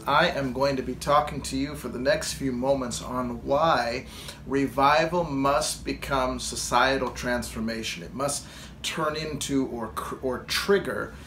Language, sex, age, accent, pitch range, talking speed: English, male, 40-59, American, 125-155 Hz, 150 wpm